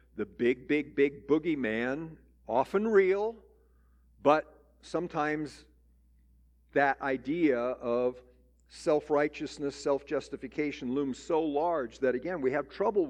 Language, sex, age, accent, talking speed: English, male, 50-69, American, 100 wpm